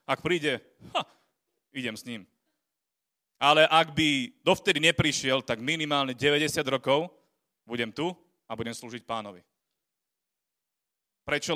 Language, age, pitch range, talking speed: Slovak, 30-49, 120-150 Hz, 115 wpm